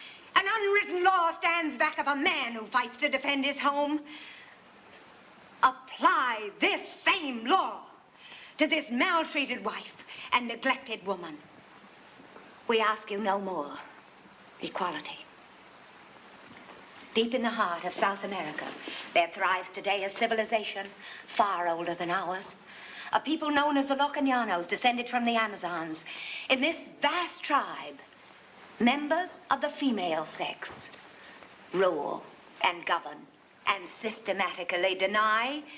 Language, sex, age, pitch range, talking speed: French, female, 60-79, 200-295 Hz, 120 wpm